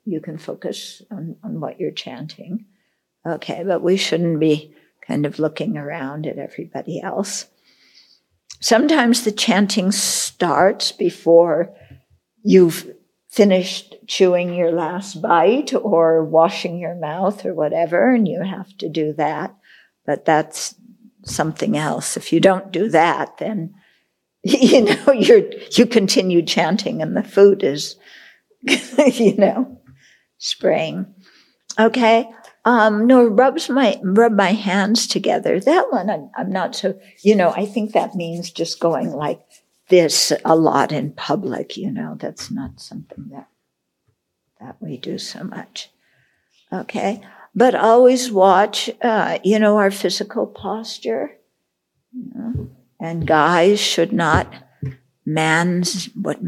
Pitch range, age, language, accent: 165-225 Hz, 60-79, English, American